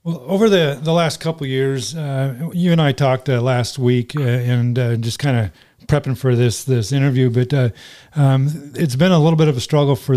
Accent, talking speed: American, 230 wpm